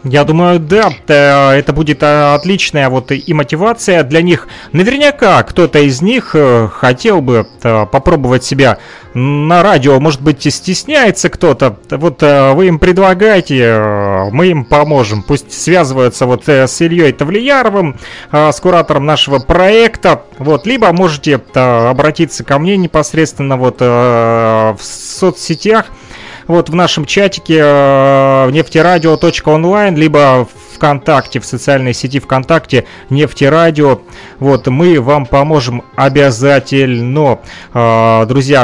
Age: 30-49